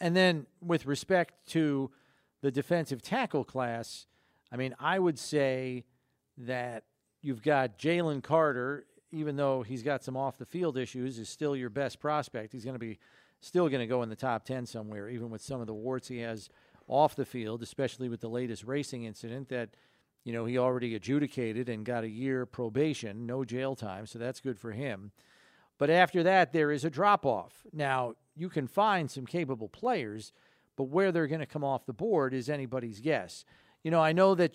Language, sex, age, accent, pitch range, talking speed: English, male, 40-59, American, 125-150 Hz, 195 wpm